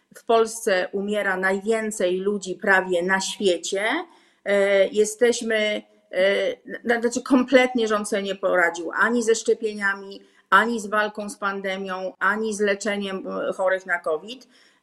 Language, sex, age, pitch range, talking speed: Polish, female, 40-59, 195-245 Hz, 115 wpm